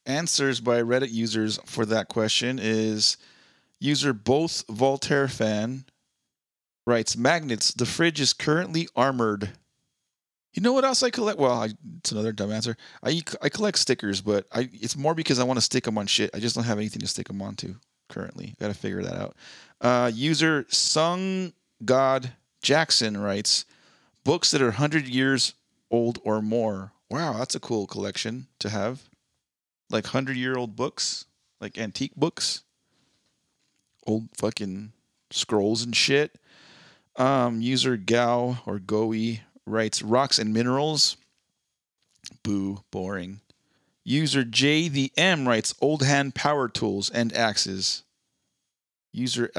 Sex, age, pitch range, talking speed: male, 30-49, 110-140 Hz, 145 wpm